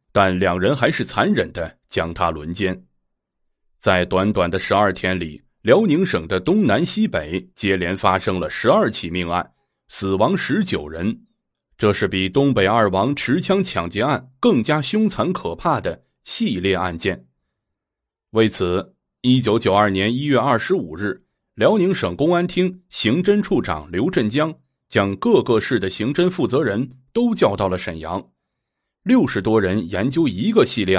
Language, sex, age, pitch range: Chinese, male, 30-49, 90-130 Hz